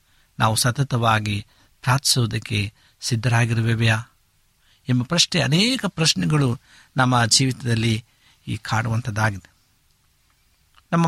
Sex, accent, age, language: male, native, 60-79, Kannada